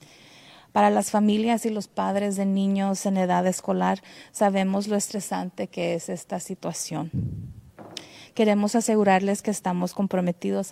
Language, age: English, 30-49